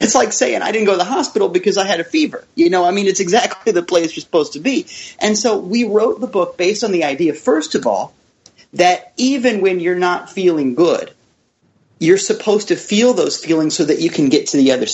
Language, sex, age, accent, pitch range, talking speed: English, male, 30-49, American, 180-250 Hz, 240 wpm